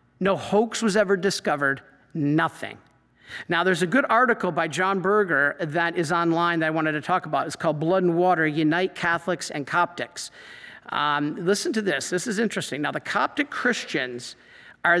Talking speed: 175 wpm